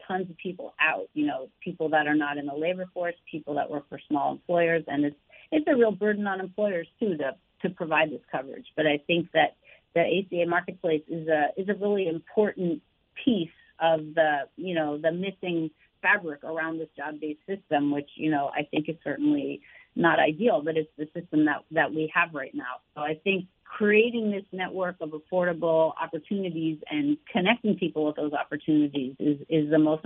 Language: English